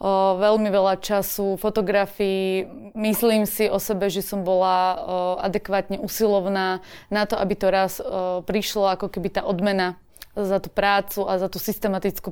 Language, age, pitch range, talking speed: Slovak, 20-39, 190-210 Hz, 145 wpm